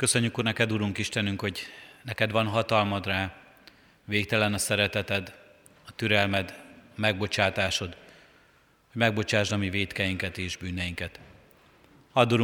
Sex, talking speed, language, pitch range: male, 110 wpm, Hungarian, 100-115 Hz